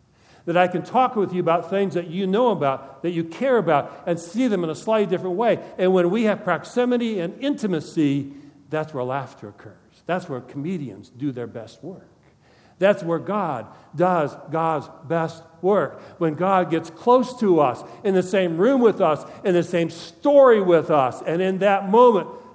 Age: 50-69